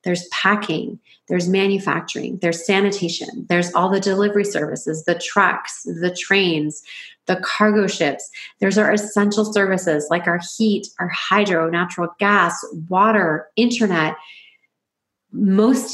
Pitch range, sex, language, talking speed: 170-200 Hz, female, English, 120 wpm